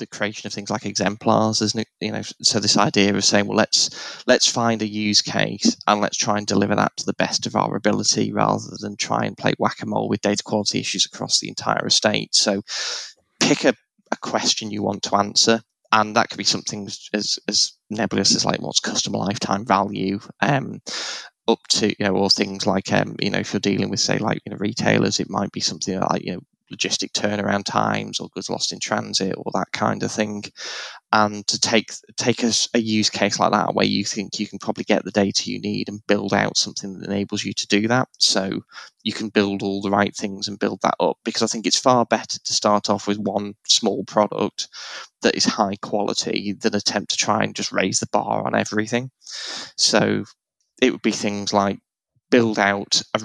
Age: 10-29